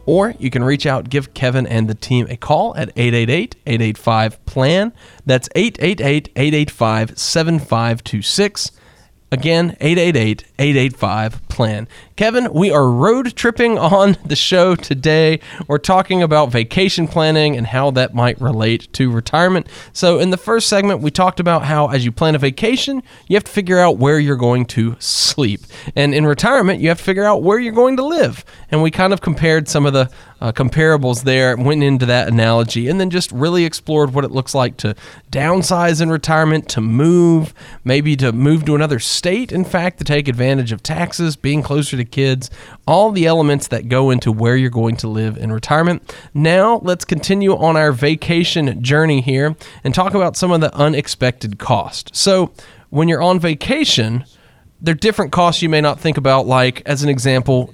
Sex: male